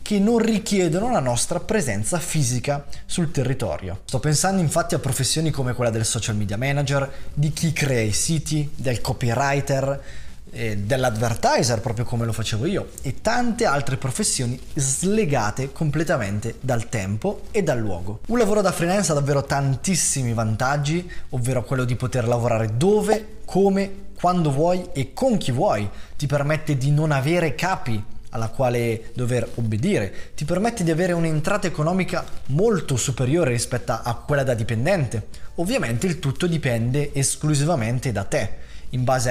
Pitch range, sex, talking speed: 120-170 Hz, male, 150 wpm